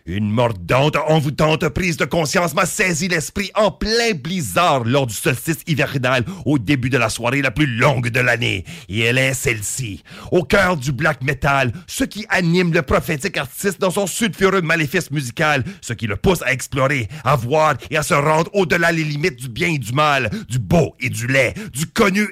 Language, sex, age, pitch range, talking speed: English, male, 40-59, 130-175 Hz, 195 wpm